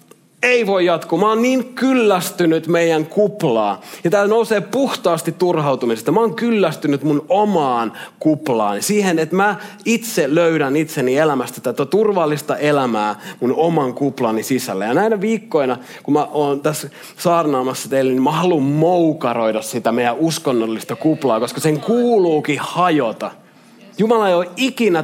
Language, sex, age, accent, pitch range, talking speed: Finnish, male, 30-49, native, 130-190 Hz, 140 wpm